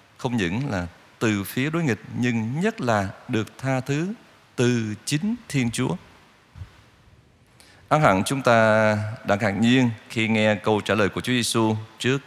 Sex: male